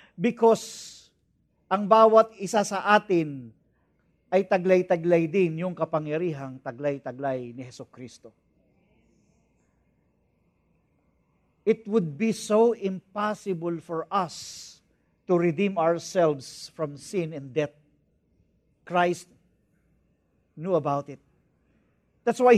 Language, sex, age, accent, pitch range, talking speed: English, male, 50-69, Filipino, 170-250 Hz, 95 wpm